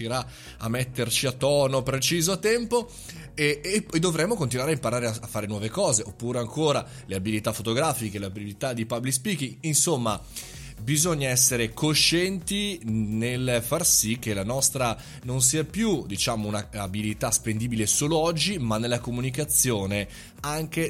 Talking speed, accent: 140 wpm, native